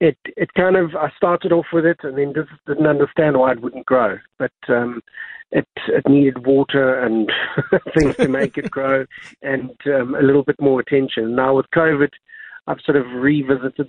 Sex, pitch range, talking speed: male, 125-150 Hz, 190 wpm